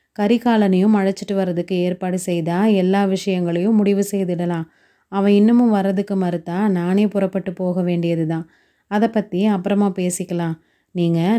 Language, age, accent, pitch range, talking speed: Tamil, 30-49, native, 175-200 Hz, 120 wpm